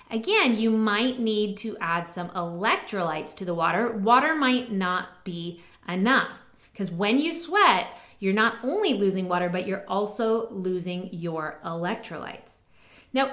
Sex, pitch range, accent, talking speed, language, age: female, 180-270 Hz, American, 145 wpm, English, 20-39